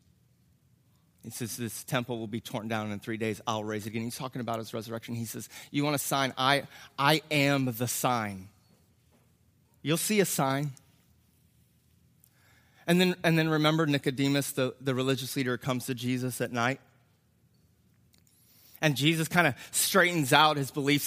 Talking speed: 165 wpm